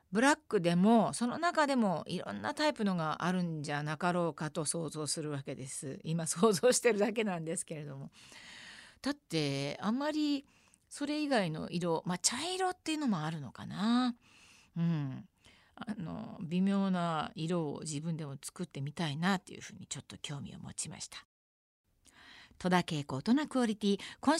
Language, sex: Japanese, female